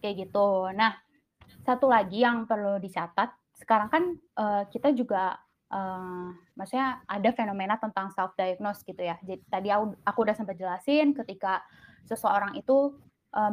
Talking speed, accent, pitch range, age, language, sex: 140 wpm, native, 195-250 Hz, 20-39, Indonesian, female